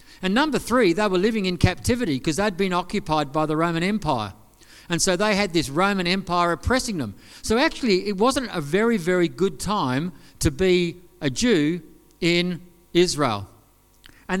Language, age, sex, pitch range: English, 50-69, male, 170-210 Hz